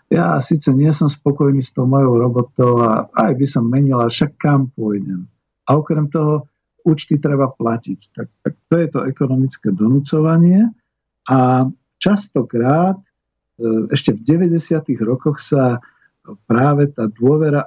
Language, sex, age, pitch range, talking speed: Slovak, male, 50-69, 115-150 Hz, 135 wpm